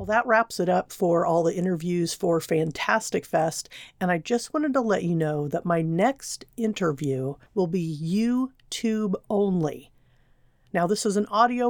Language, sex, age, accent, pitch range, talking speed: English, female, 50-69, American, 165-210 Hz, 170 wpm